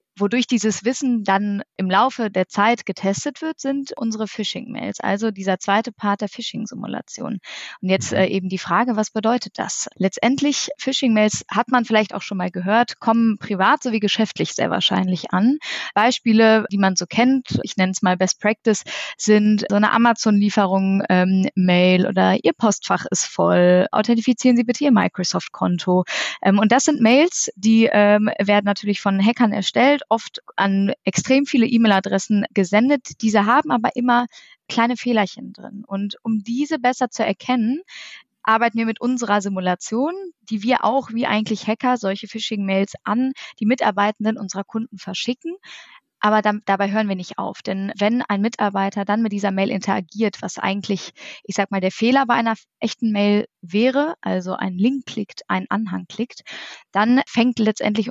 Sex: female